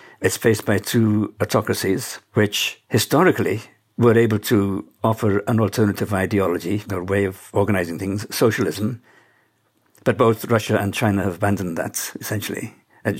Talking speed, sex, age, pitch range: 135 wpm, male, 60-79, 100-120 Hz